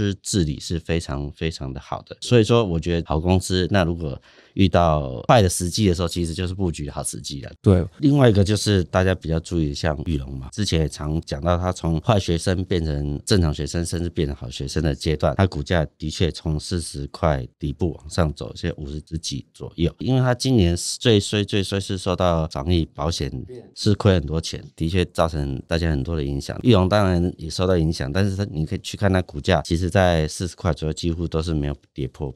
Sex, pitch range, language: male, 75-95 Hz, Chinese